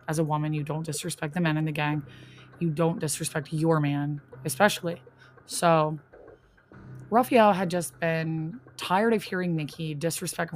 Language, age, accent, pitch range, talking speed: English, 20-39, American, 155-180 Hz, 155 wpm